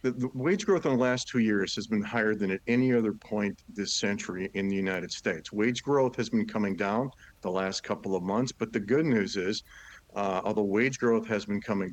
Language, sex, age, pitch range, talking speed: English, male, 50-69, 100-120 Hz, 230 wpm